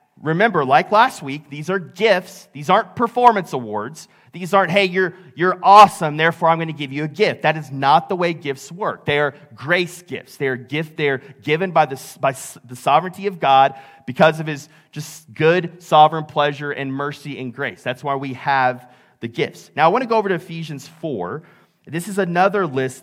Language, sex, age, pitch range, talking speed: English, male, 30-49, 140-185 Hz, 205 wpm